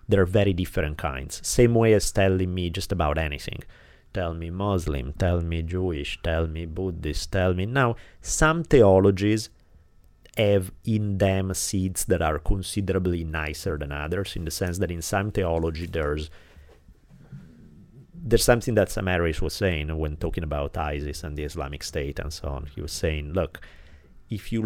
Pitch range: 80-105 Hz